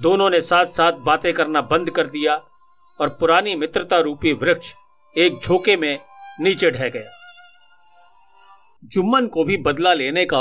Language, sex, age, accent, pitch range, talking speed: Hindi, male, 50-69, native, 160-250 Hz, 150 wpm